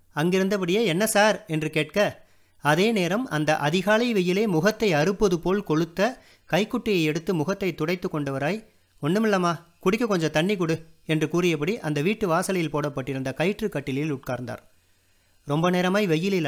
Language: Tamil